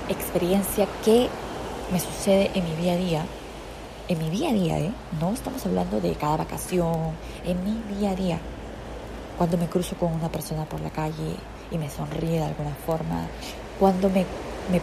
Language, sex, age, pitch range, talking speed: Spanish, female, 20-39, 160-185 Hz, 180 wpm